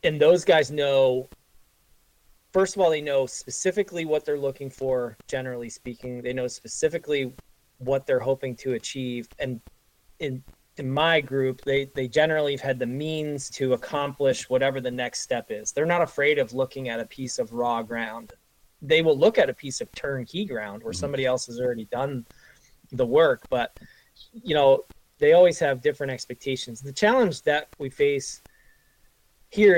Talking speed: 170 wpm